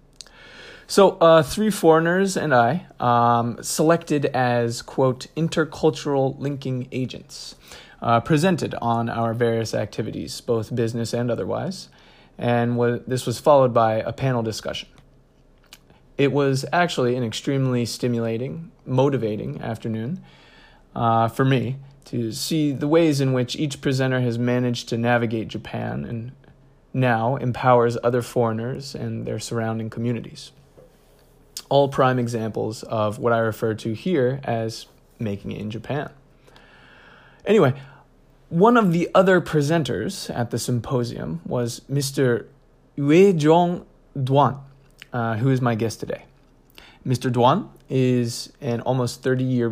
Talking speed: 125 wpm